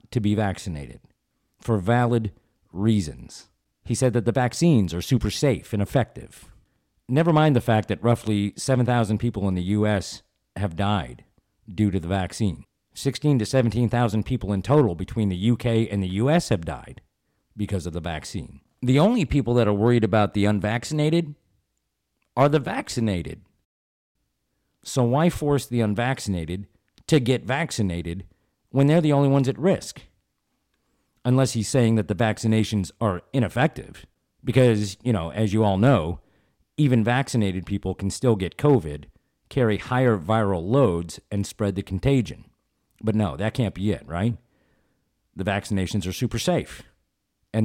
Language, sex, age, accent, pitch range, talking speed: English, male, 50-69, American, 100-125 Hz, 150 wpm